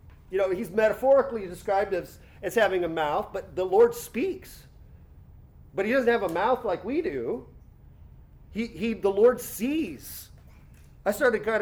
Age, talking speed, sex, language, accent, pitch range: 40-59, 165 wpm, male, English, American, 190-255 Hz